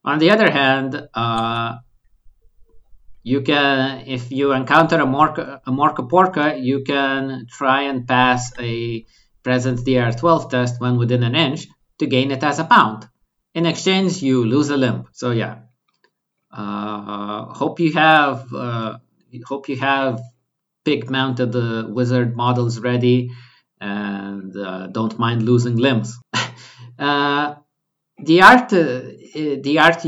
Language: English